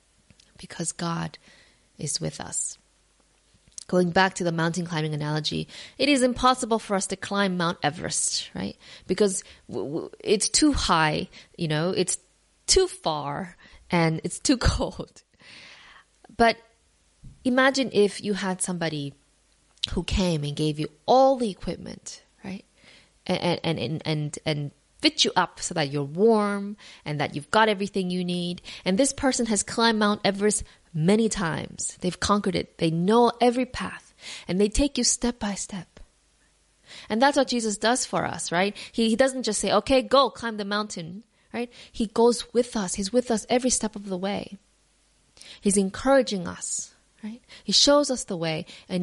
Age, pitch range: 20-39, 175-235 Hz